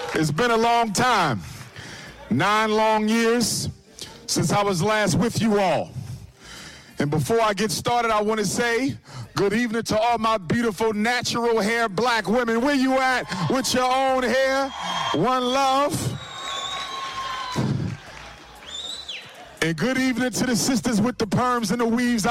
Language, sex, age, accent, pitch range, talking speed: Dutch, male, 40-59, American, 210-265 Hz, 150 wpm